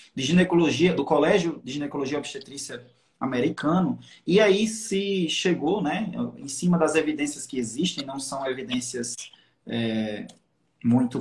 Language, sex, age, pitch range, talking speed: Portuguese, male, 20-39, 135-185 Hz, 130 wpm